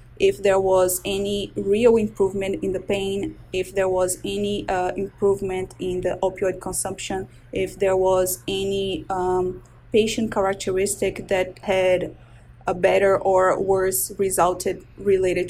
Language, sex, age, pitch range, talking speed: English, female, 20-39, 185-215 Hz, 130 wpm